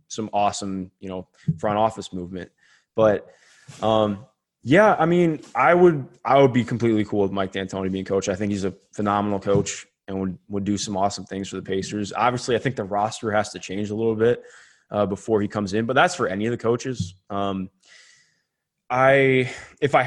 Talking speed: 200 wpm